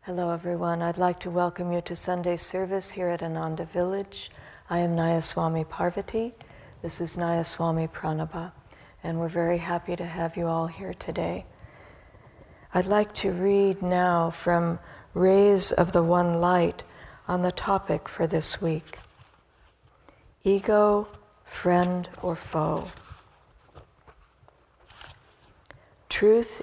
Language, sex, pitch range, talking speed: English, female, 165-195 Hz, 120 wpm